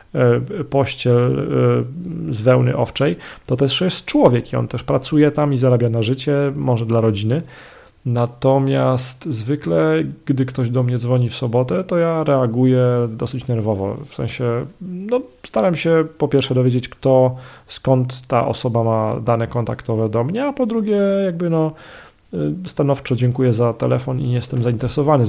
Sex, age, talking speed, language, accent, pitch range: male, 40-59, 150 wpm, Polish, native, 120-150 Hz